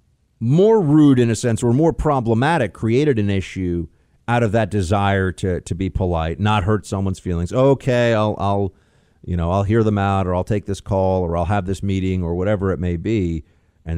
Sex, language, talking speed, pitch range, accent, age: male, English, 205 wpm, 85-115 Hz, American, 50-69